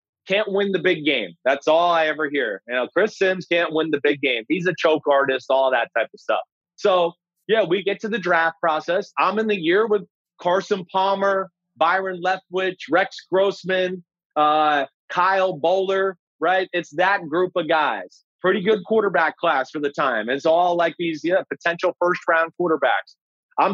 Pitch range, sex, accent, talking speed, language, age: 155-195 Hz, male, American, 180 wpm, English, 30-49